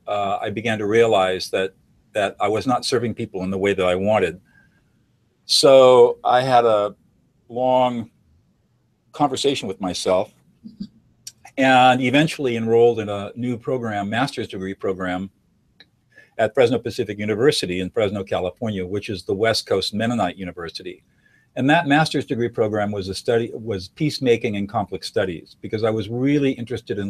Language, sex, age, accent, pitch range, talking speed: English, male, 50-69, American, 100-125 Hz, 155 wpm